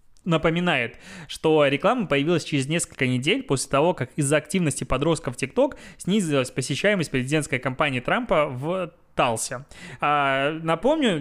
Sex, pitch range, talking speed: male, 140-170 Hz, 125 wpm